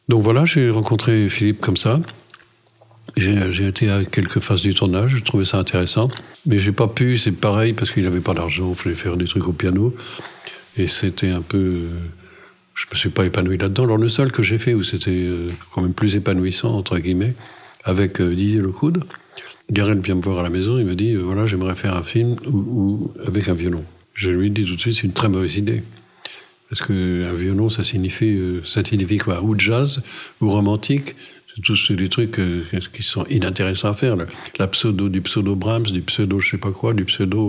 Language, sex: French, male